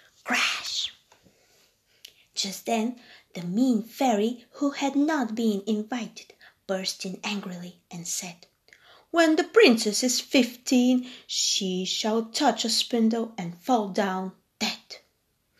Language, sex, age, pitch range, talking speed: Bulgarian, female, 20-39, 200-285 Hz, 115 wpm